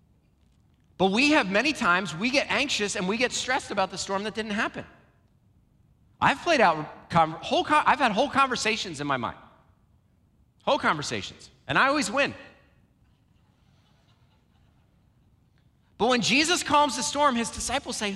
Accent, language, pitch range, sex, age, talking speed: American, English, 210-290 Hz, male, 40-59, 145 wpm